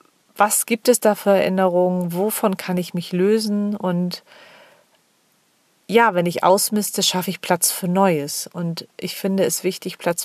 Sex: female